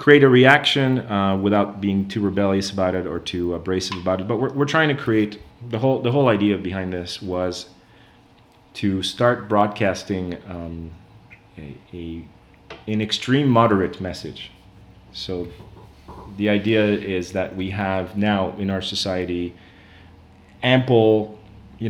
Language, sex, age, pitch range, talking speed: English, male, 30-49, 90-110 Hz, 140 wpm